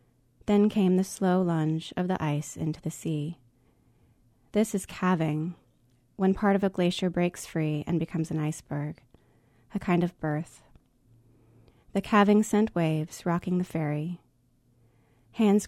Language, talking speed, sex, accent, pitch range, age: English, 140 wpm, female, American, 155-190 Hz, 30-49